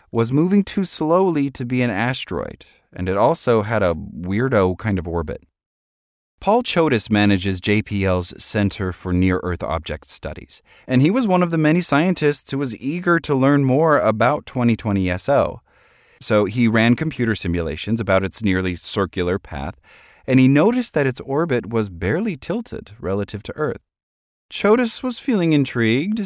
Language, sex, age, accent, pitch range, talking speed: English, male, 30-49, American, 95-140 Hz, 155 wpm